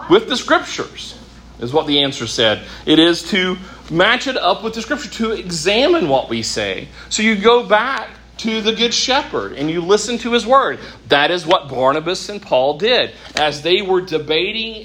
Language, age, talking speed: English, 40-59, 190 wpm